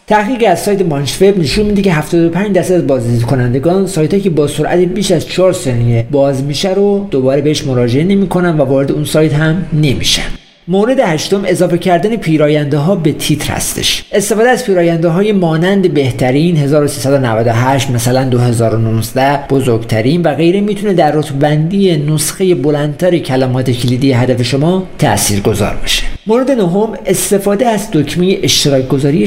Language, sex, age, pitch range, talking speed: Persian, male, 50-69, 135-185 Hz, 150 wpm